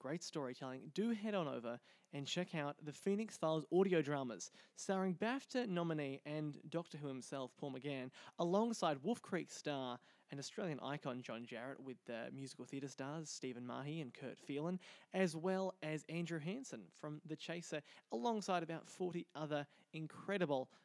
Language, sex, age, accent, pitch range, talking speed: English, male, 20-39, Australian, 135-185 Hz, 160 wpm